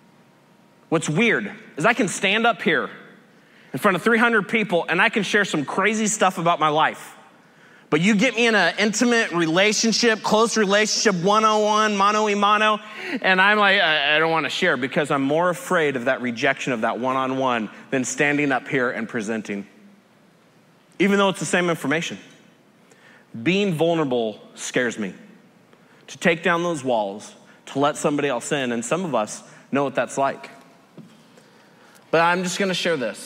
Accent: American